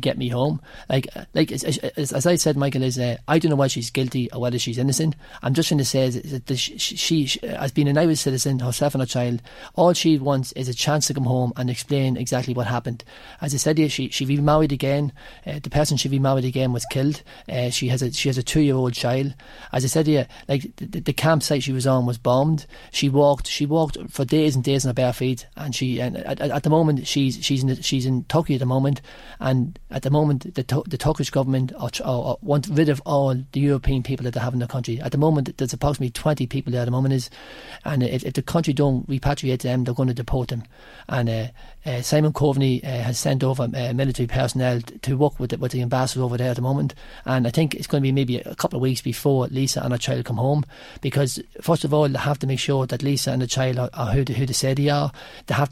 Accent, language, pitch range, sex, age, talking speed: Irish, English, 125-145 Hz, male, 30-49, 255 wpm